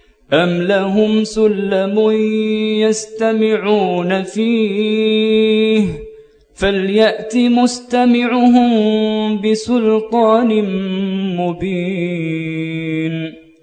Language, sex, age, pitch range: Arabic, male, 20-39, 175-220 Hz